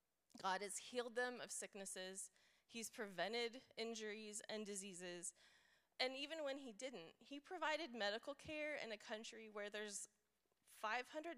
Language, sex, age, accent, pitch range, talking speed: English, female, 20-39, American, 210-270 Hz, 135 wpm